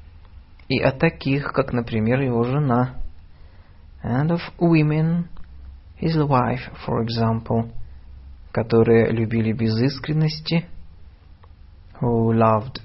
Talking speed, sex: 90 wpm, male